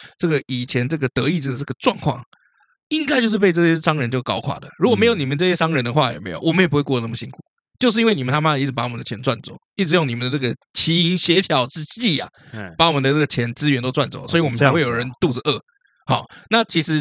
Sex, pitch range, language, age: male, 130-190 Hz, Chinese, 20-39